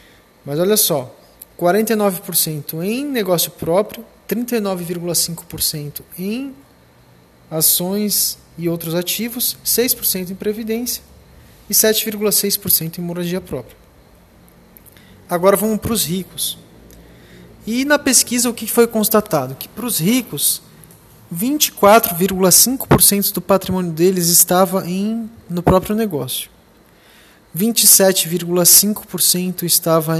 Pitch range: 170-215 Hz